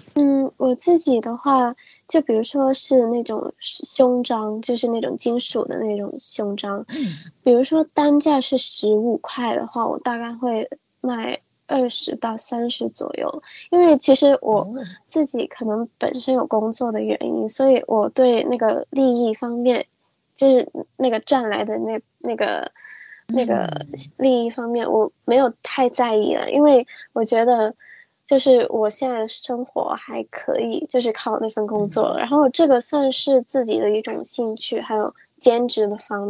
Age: 10-29